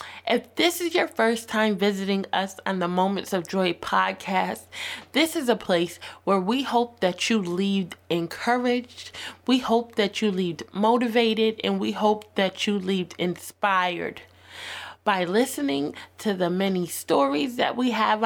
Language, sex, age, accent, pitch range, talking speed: English, female, 20-39, American, 185-240 Hz, 155 wpm